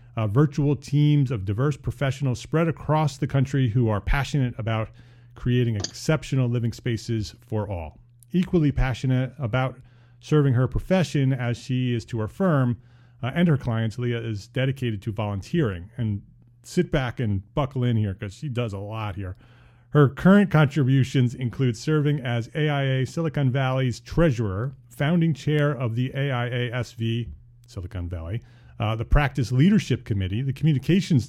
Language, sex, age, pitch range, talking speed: English, male, 30-49, 115-145 Hz, 150 wpm